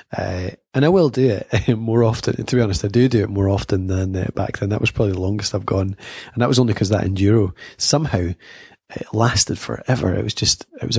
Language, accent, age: English, British, 20-39